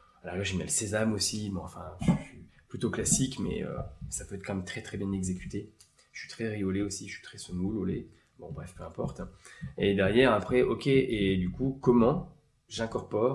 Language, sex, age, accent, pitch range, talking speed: French, male, 20-39, French, 90-120 Hz, 205 wpm